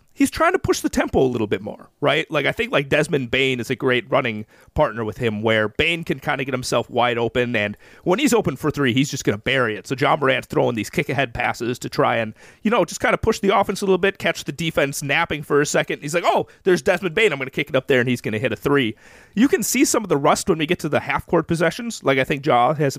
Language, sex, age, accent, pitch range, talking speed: English, male, 30-49, American, 125-185 Hz, 290 wpm